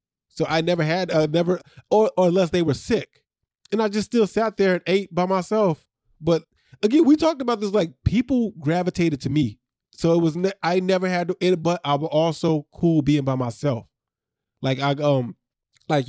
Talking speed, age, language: 200 wpm, 20-39, English